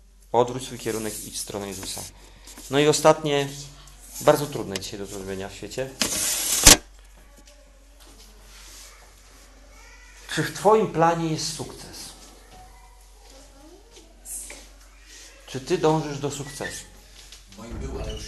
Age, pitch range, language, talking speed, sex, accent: 40-59, 105-155 Hz, Polish, 100 wpm, male, native